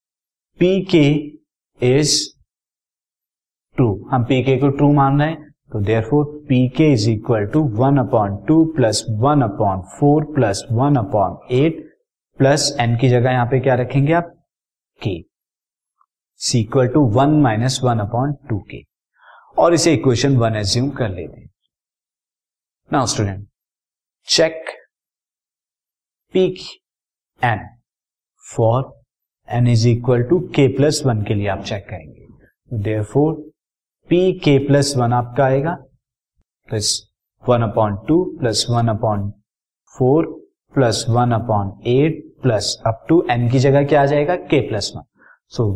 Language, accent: Hindi, native